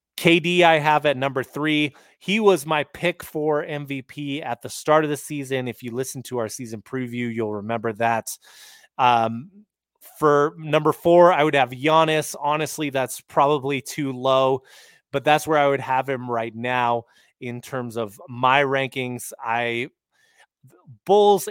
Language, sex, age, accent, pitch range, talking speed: English, male, 30-49, American, 125-150 Hz, 160 wpm